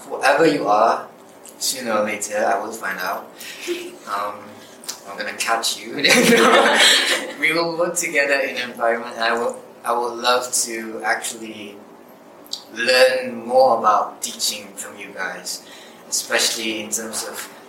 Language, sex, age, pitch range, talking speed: English, male, 20-39, 110-135 Hz, 140 wpm